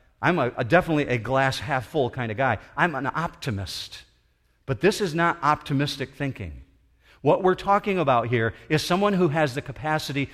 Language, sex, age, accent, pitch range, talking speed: English, male, 50-69, American, 100-160 Hz, 170 wpm